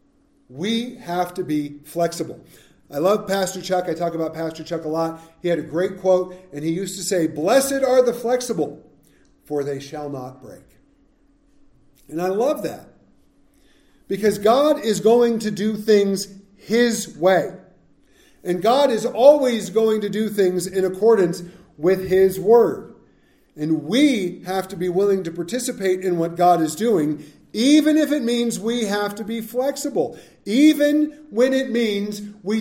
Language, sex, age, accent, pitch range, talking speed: English, male, 50-69, American, 185-265 Hz, 160 wpm